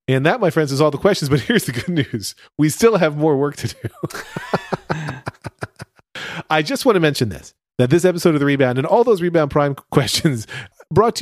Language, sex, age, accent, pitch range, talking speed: English, male, 30-49, American, 120-175 Hz, 215 wpm